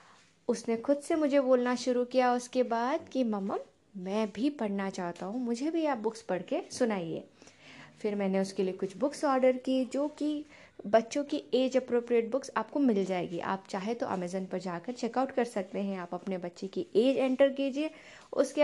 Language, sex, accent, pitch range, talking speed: Hindi, female, native, 200-270 Hz, 190 wpm